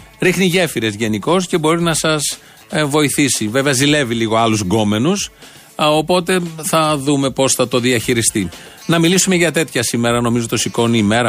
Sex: male